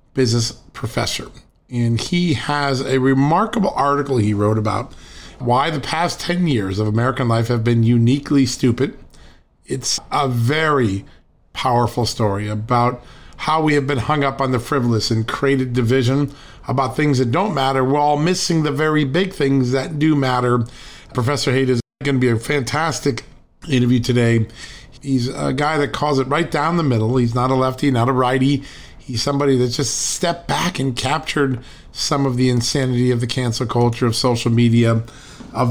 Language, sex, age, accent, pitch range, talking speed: English, male, 40-59, American, 120-145 Hz, 170 wpm